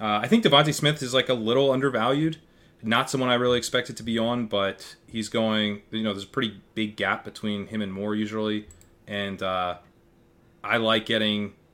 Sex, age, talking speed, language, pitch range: male, 30-49, 195 wpm, English, 100-120 Hz